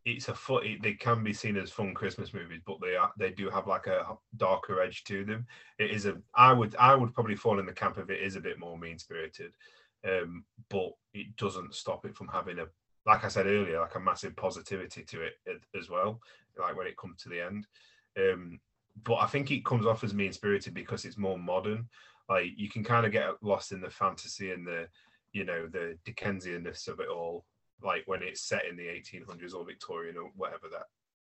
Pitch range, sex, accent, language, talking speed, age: 90-115 Hz, male, British, English, 225 wpm, 30-49